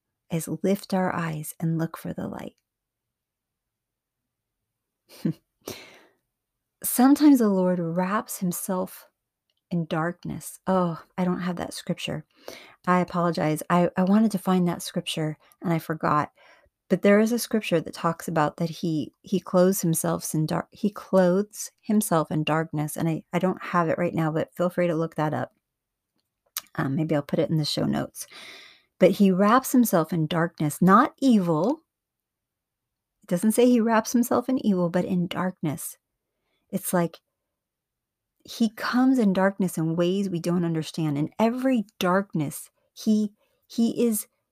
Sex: female